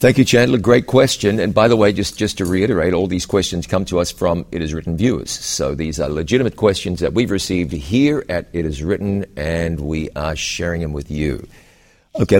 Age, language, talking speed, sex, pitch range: 50-69, English, 220 wpm, male, 75-100 Hz